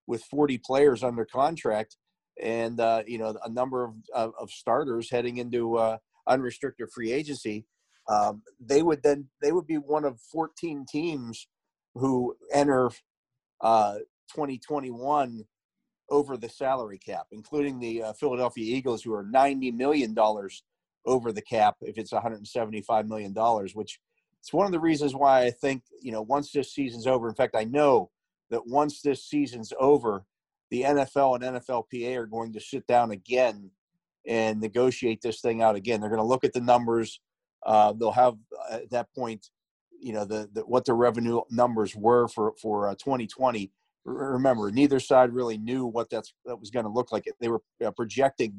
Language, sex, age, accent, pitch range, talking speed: English, male, 40-59, American, 110-135 Hz, 175 wpm